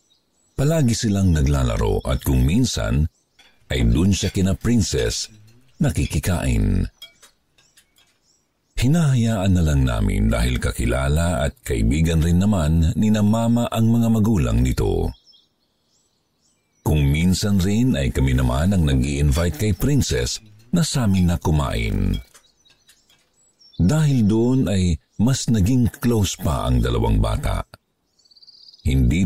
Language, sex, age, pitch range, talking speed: Filipino, male, 50-69, 75-110 Hz, 115 wpm